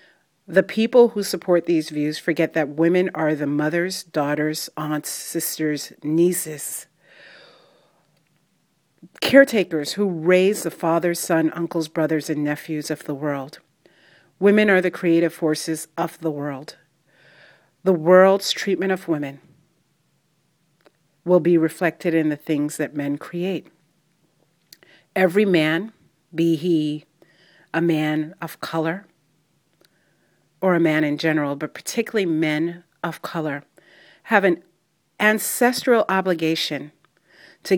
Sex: female